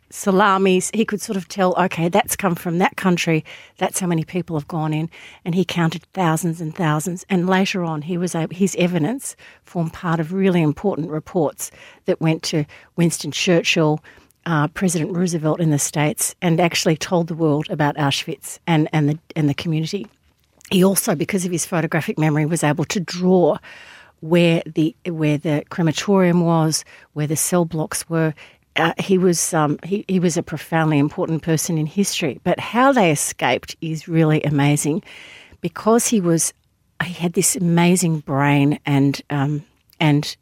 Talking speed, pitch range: 170 wpm, 155-185 Hz